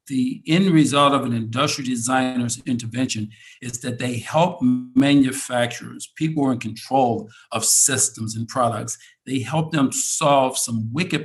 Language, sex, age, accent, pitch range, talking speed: English, male, 50-69, American, 115-135 Hz, 150 wpm